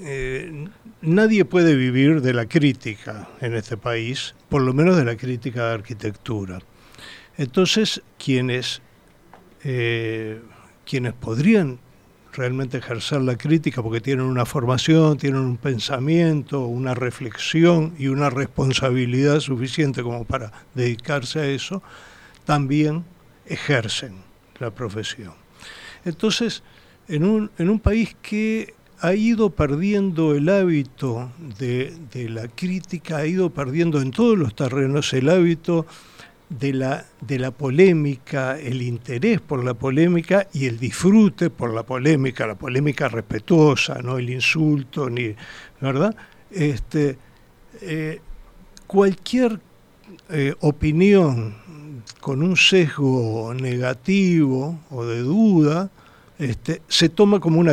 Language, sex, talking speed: Spanish, male, 115 wpm